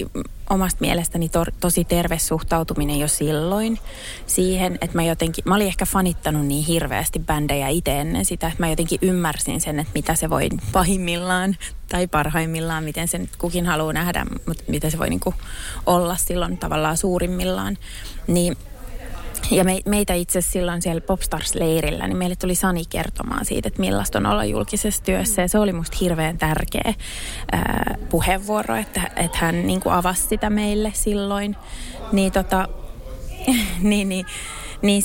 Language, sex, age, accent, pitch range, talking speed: Finnish, female, 20-39, native, 145-185 Hz, 145 wpm